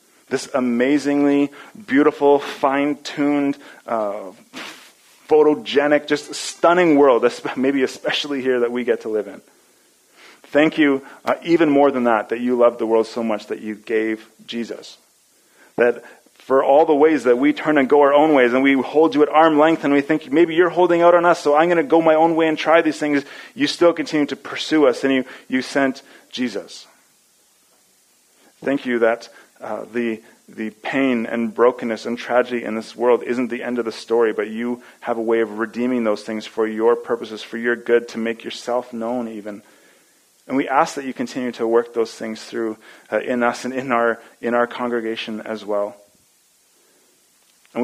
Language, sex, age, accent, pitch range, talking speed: English, male, 30-49, American, 115-145 Hz, 190 wpm